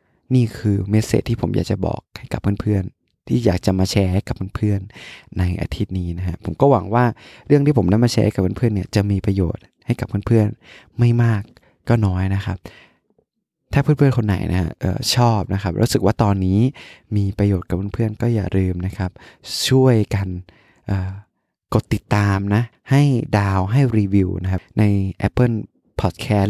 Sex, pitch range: male, 95-115 Hz